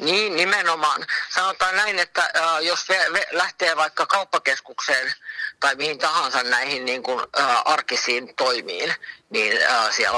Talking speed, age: 100 wpm, 50-69